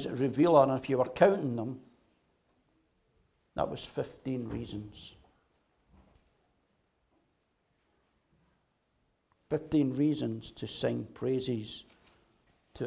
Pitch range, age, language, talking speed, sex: 115-150 Hz, 60-79, English, 80 wpm, male